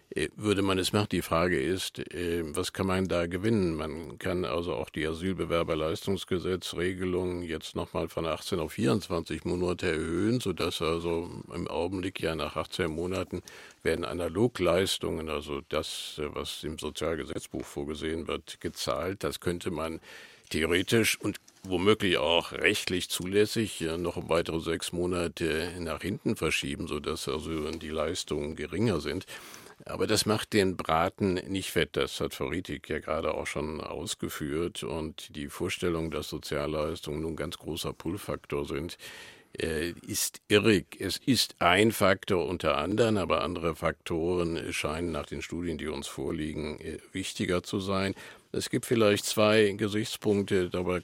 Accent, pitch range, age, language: German, 80-100 Hz, 50-69, German